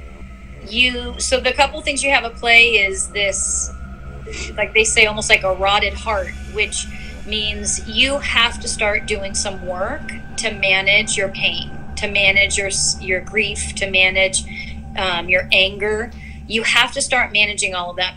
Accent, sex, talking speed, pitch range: American, female, 165 wpm, 185-230 Hz